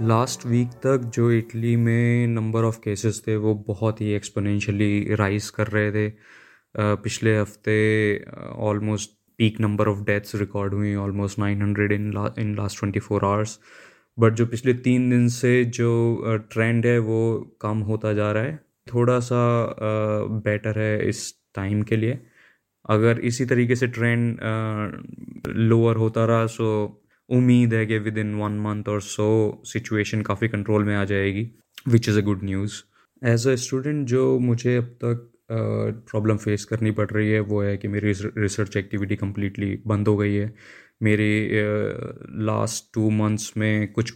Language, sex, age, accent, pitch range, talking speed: Hindi, male, 20-39, native, 105-115 Hz, 165 wpm